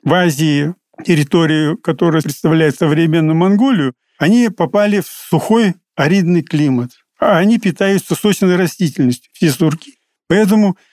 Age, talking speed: 50-69, 115 wpm